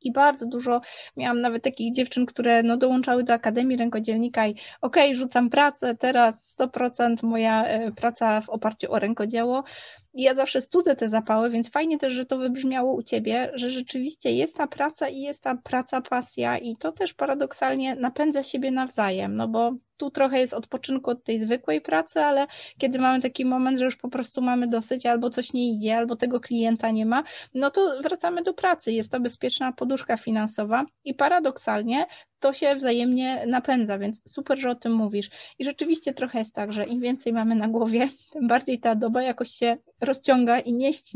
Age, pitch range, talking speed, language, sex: 20-39, 230-280 Hz, 185 wpm, Polish, female